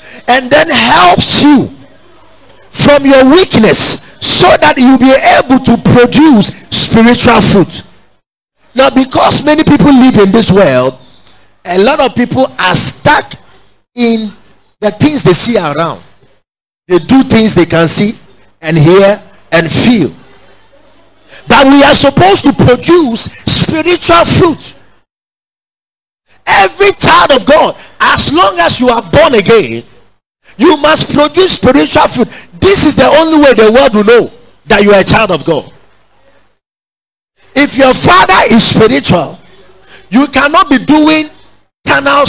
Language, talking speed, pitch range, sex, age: English, 135 wpm, 185-275 Hz, male, 50-69